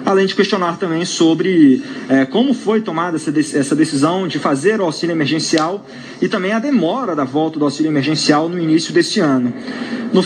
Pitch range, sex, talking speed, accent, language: 160-220 Hz, male, 175 wpm, Brazilian, Portuguese